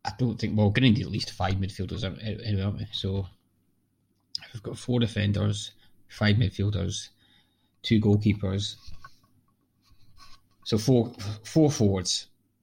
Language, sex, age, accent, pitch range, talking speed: English, male, 20-39, British, 100-115 Hz, 135 wpm